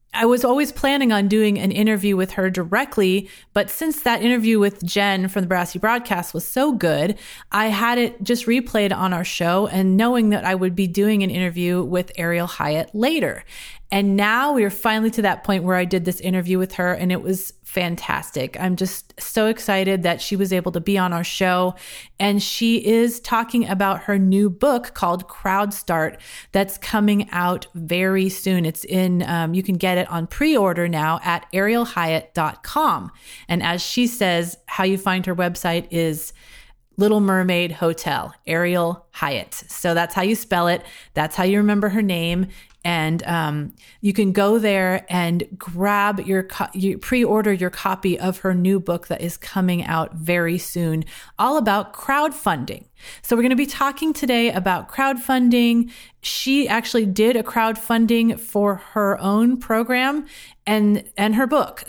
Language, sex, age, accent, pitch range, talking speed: English, female, 30-49, American, 180-225 Hz, 175 wpm